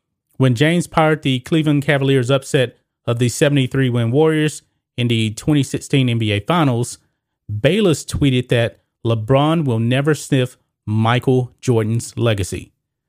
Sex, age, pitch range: male, 30-49, 120-150 Hz